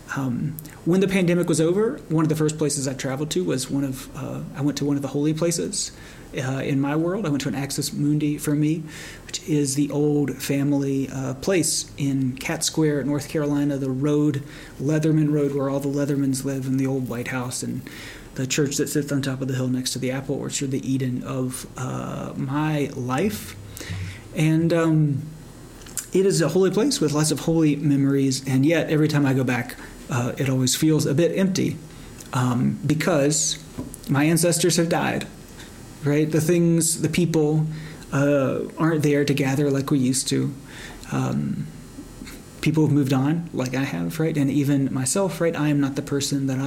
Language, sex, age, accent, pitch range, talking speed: English, male, 30-49, American, 130-155 Hz, 190 wpm